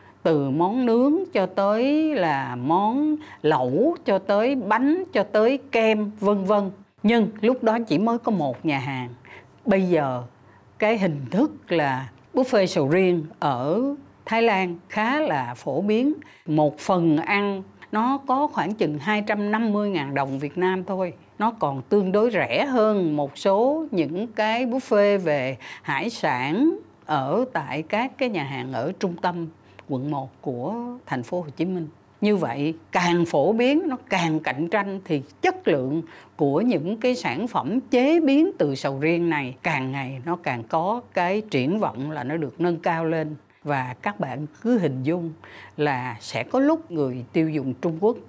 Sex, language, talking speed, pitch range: female, Vietnamese, 170 wpm, 150-235 Hz